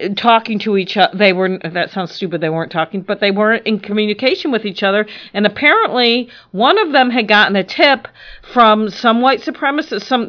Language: English